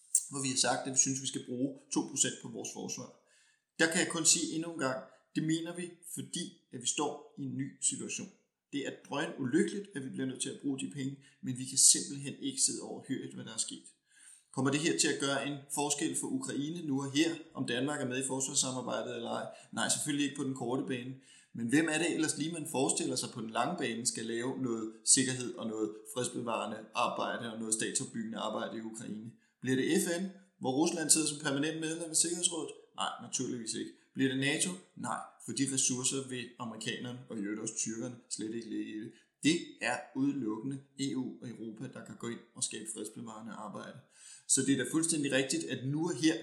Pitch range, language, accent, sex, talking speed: 125-160 Hz, Danish, native, male, 220 wpm